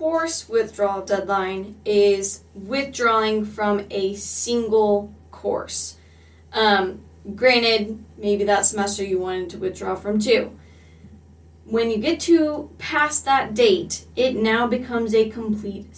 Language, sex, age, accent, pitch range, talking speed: English, female, 20-39, American, 200-230 Hz, 120 wpm